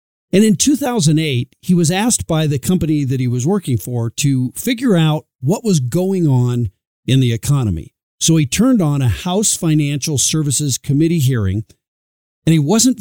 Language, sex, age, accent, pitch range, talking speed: English, male, 50-69, American, 120-165 Hz, 170 wpm